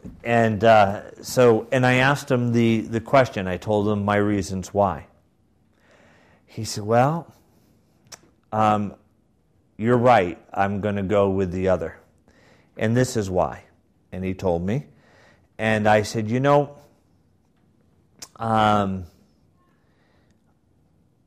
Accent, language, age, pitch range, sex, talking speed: American, English, 40-59, 95-115 Hz, male, 120 wpm